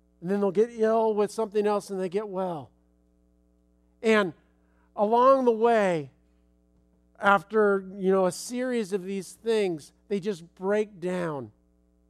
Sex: male